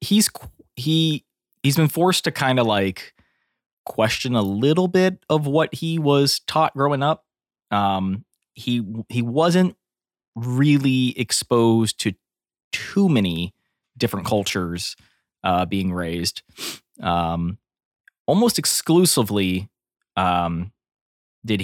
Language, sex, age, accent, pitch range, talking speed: English, male, 20-39, American, 90-130 Hz, 110 wpm